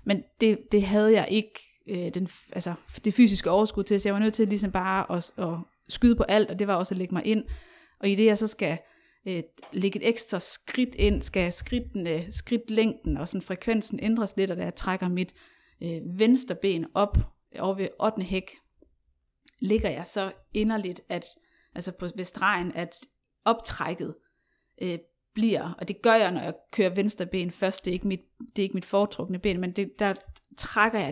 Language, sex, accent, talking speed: Danish, female, native, 200 wpm